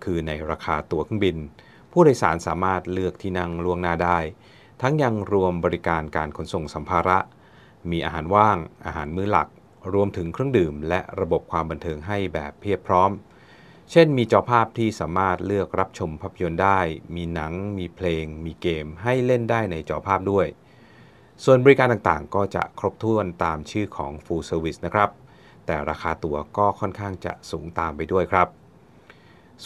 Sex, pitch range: male, 80-105 Hz